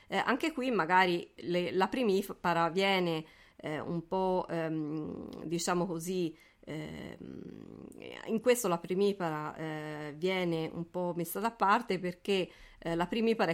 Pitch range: 175-215 Hz